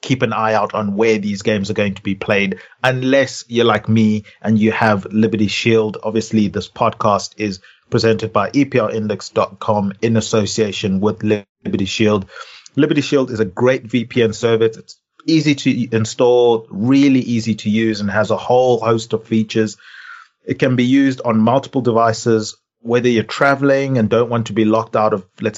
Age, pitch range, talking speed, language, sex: 30-49, 110-125 Hz, 175 wpm, English, male